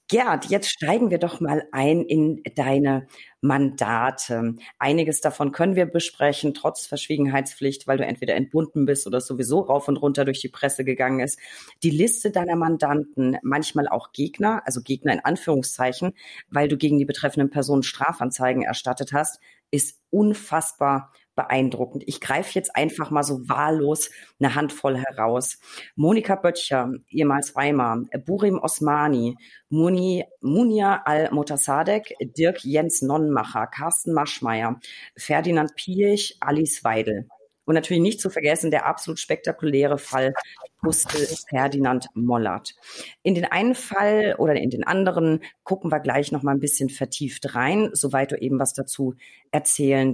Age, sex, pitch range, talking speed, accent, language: 40-59, female, 135-160 Hz, 140 wpm, German, German